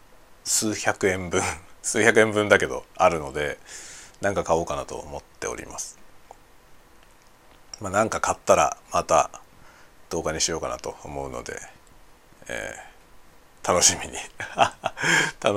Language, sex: Japanese, male